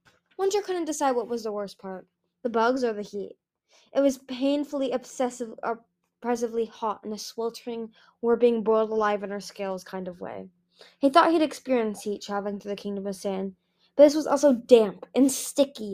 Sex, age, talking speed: female, 10-29, 180 wpm